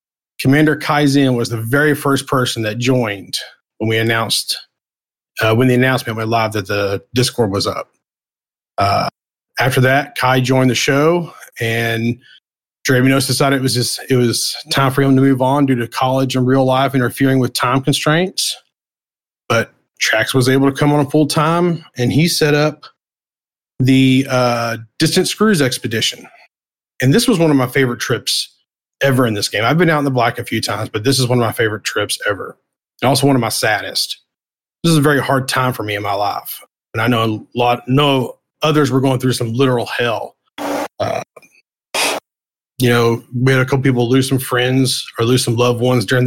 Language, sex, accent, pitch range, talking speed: English, male, American, 120-140 Hz, 195 wpm